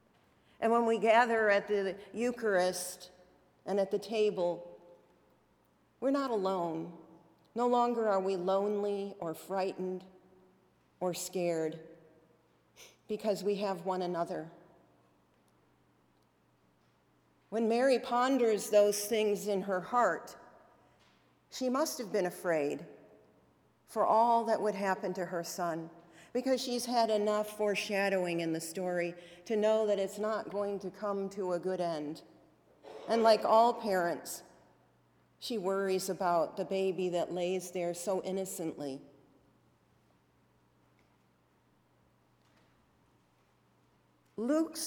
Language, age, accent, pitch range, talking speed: English, 50-69, American, 170-210 Hz, 110 wpm